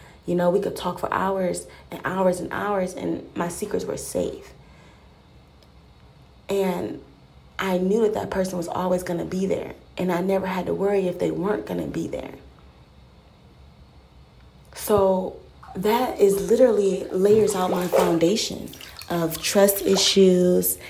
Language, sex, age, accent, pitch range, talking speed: English, female, 20-39, American, 160-195 Hz, 150 wpm